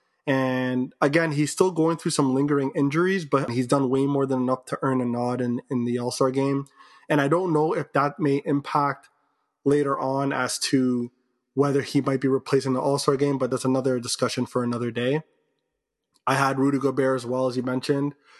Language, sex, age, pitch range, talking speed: English, male, 20-39, 130-150 Hz, 200 wpm